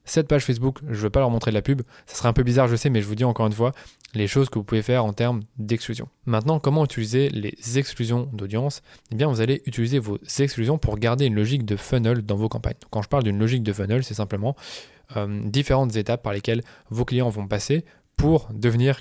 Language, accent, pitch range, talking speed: French, French, 110-135 Hz, 245 wpm